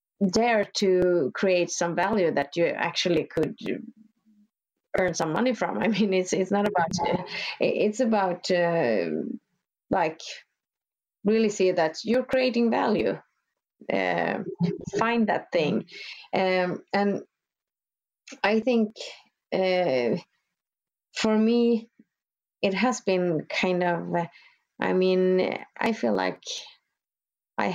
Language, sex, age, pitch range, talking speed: English, female, 30-49, 180-230 Hz, 115 wpm